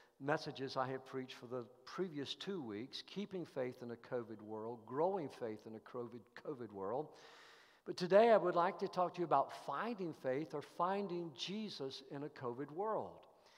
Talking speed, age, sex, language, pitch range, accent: 175 wpm, 50-69, male, English, 130-180 Hz, American